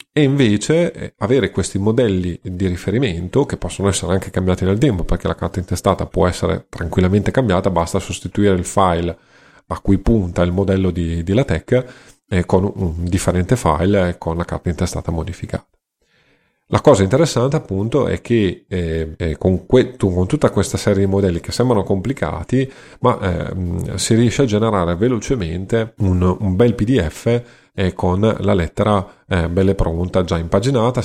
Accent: native